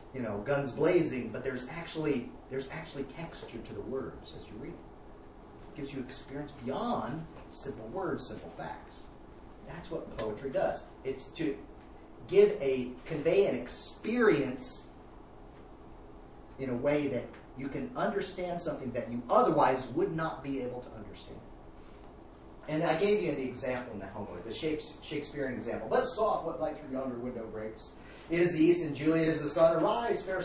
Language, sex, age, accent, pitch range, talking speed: English, male, 40-59, American, 115-155 Hz, 165 wpm